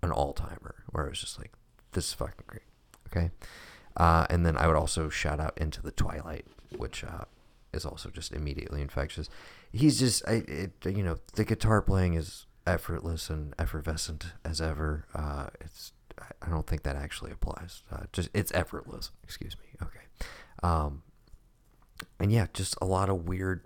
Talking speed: 175 wpm